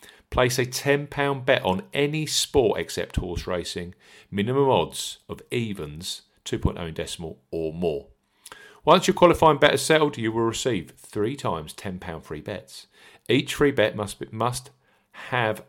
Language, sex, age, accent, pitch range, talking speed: English, male, 50-69, British, 90-135 Hz, 150 wpm